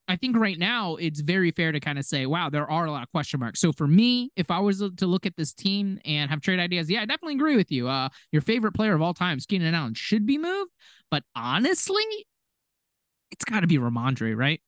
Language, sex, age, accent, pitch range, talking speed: English, male, 20-39, American, 130-190 Hz, 245 wpm